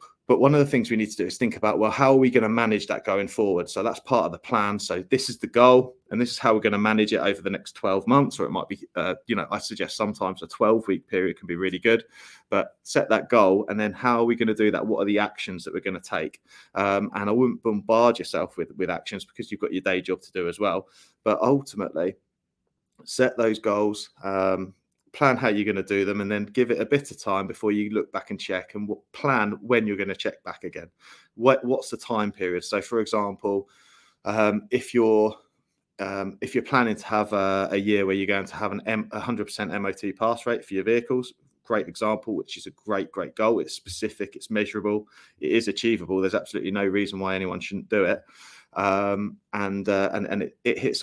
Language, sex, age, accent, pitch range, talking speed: English, male, 20-39, British, 95-115 Hz, 240 wpm